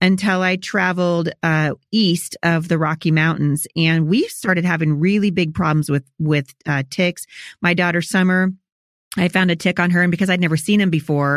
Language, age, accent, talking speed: English, 30-49, American, 190 wpm